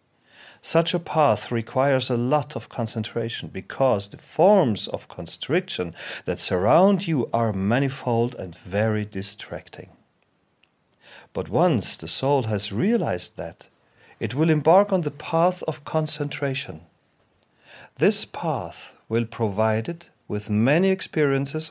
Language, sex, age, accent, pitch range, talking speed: English, male, 40-59, German, 110-155 Hz, 120 wpm